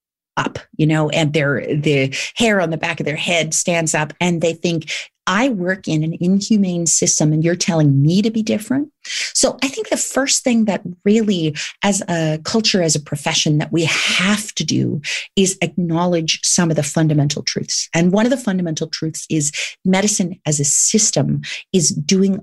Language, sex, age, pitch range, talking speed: English, female, 40-59, 155-185 Hz, 185 wpm